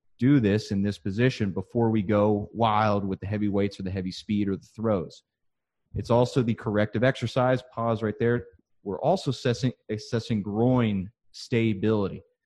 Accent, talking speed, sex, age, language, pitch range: American, 165 wpm, male, 30-49, English, 100-120 Hz